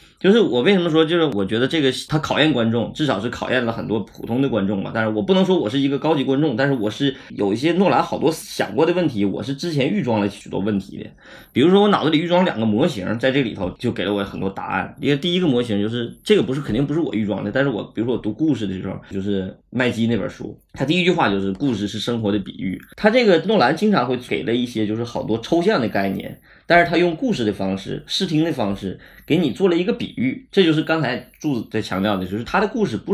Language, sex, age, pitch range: Chinese, male, 20-39, 105-175 Hz